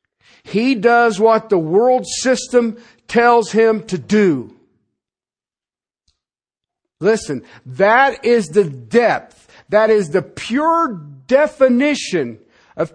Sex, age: male, 50-69